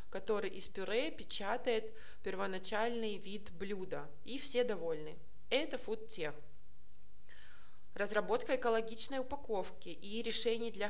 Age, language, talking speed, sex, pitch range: 20-39, Russian, 100 wpm, female, 185-230 Hz